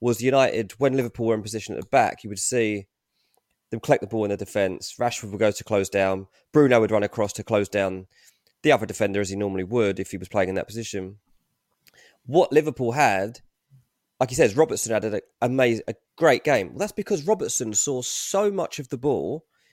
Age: 20-39